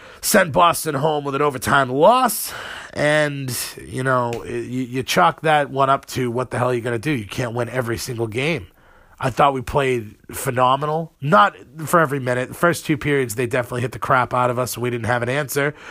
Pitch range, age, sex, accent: 125-160 Hz, 40-59, male, American